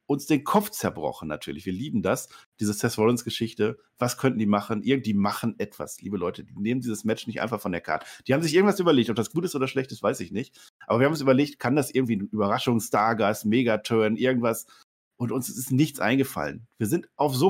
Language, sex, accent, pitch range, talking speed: German, male, German, 110-160 Hz, 225 wpm